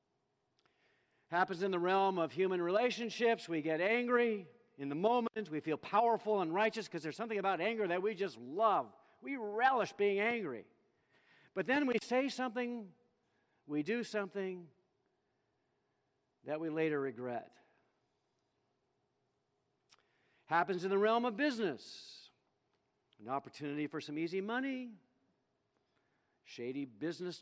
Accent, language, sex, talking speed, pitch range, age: American, English, male, 125 wpm, 150-220 Hz, 50-69